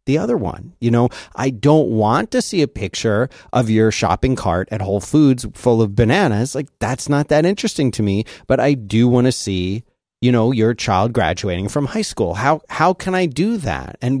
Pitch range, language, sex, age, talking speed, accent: 105-130 Hz, English, male, 30-49, 210 wpm, American